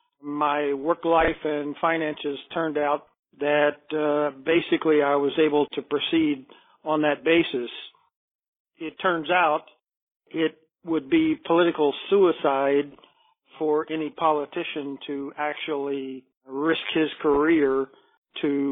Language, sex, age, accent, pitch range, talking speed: English, male, 50-69, American, 140-165 Hz, 110 wpm